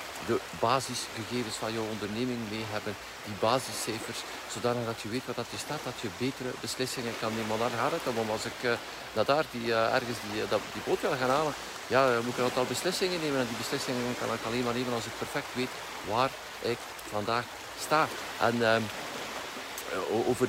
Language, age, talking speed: Dutch, 50-69, 200 wpm